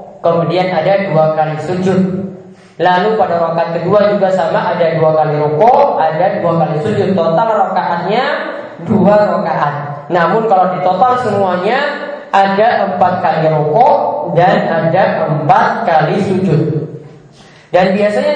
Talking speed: 125 wpm